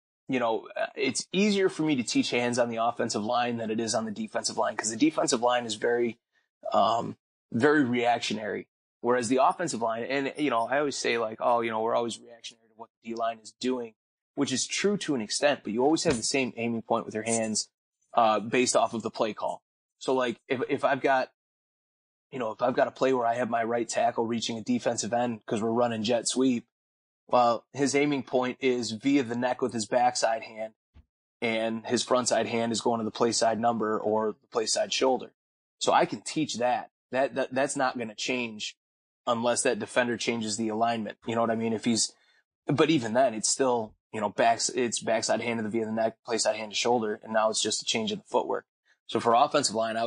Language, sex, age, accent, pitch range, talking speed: English, male, 20-39, American, 110-125 Hz, 230 wpm